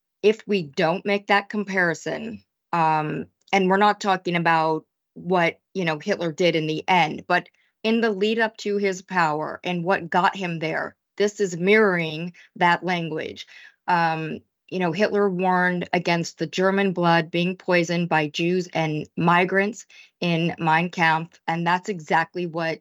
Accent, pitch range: American, 170-200 Hz